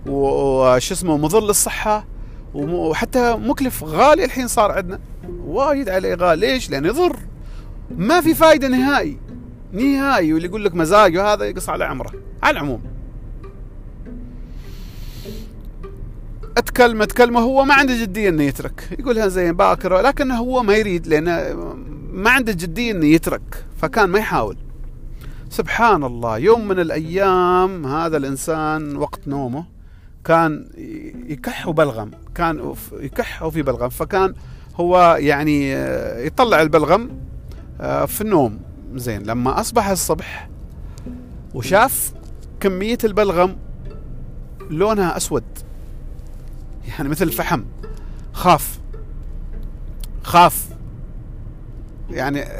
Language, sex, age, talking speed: Arabic, male, 40-59, 105 wpm